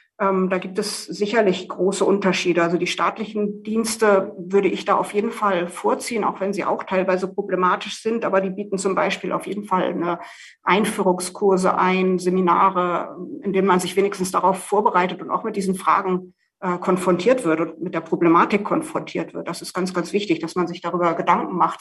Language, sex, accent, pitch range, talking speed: German, female, German, 185-210 Hz, 185 wpm